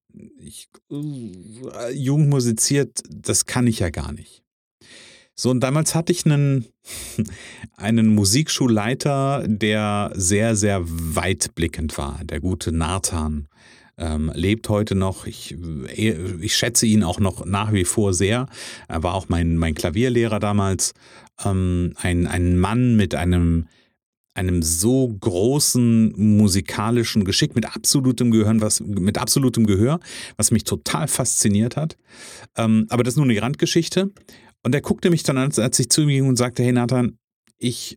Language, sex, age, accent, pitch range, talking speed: German, male, 40-59, German, 95-125 Hz, 145 wpm